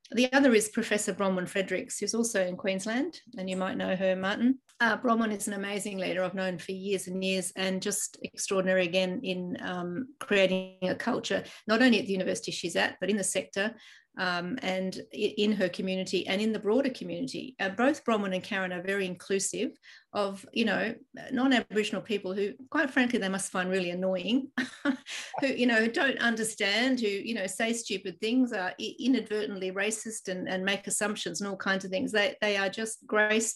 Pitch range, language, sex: 185-225 Hz, English, female